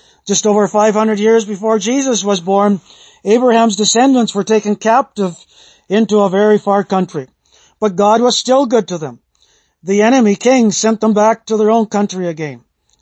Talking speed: 165 wpm